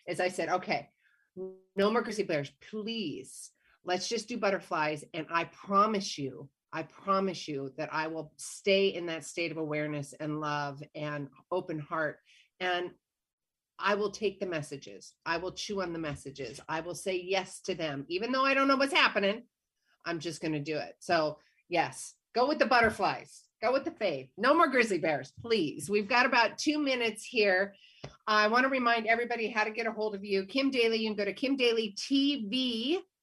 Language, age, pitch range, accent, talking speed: English, 40-59, 170-230 Hz, American, 190 wpm